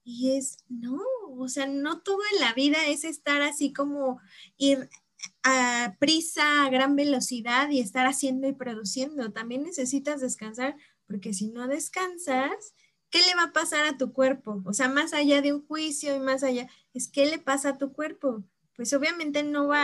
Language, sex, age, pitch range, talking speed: Spanish, female, 20-39, 230-280 Hz, 185 wpm